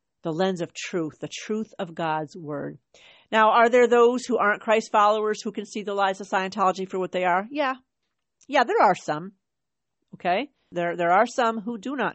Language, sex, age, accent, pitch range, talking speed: English, female, 50-69, American, 175-215 Hz, 205 wpm